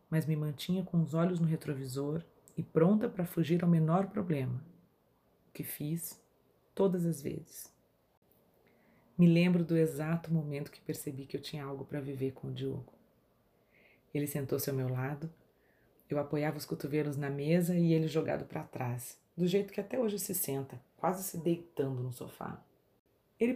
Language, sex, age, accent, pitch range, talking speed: Portuguese, female, 30-49, Brazilian, 145-190 Hz, 170 wpm